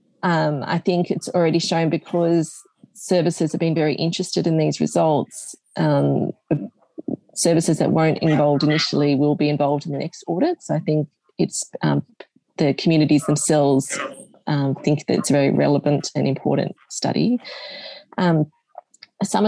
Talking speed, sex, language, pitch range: 150 wpm, female, English, 145-180 Hz